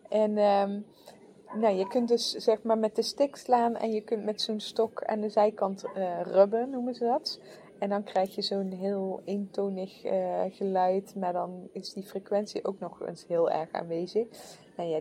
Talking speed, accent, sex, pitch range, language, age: 185 wpm, Dutch, female, 185-215 Hz, English, 20-39